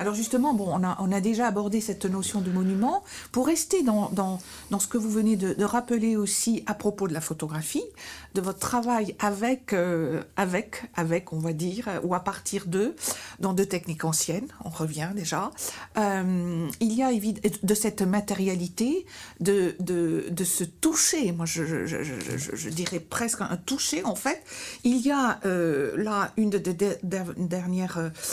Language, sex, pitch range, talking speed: French, female, 175-230 Hz, 180 wpm